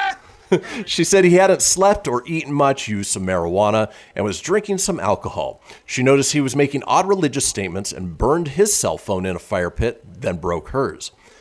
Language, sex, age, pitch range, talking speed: English, male, 40-59, 100-165 Hz, 190 wpm